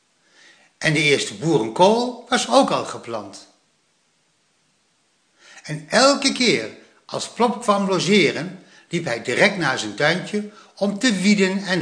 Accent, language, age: Dutch, Dutch, 60-79